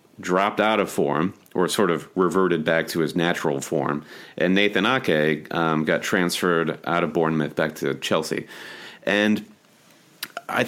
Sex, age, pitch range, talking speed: male, 30-49, 85-110 Hz, 150 wpm